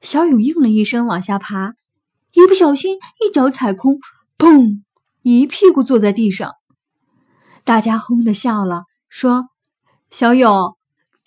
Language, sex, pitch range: Chinese, female, 195-280 Hz